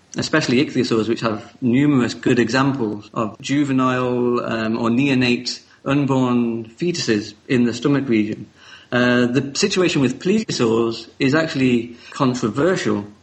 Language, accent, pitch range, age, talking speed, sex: English, British, 115-130 Hz, 40-59, 120 wpm, male